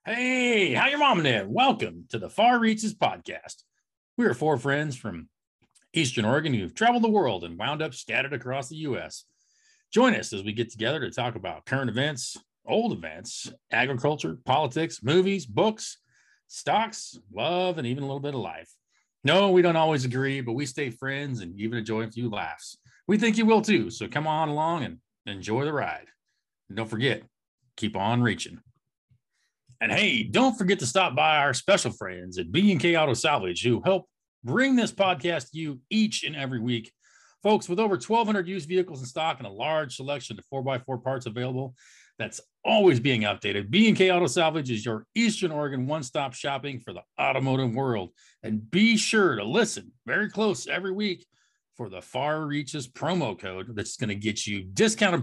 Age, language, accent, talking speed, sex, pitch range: 40-59, English, American, 185 wpm, male, 120-190 Hz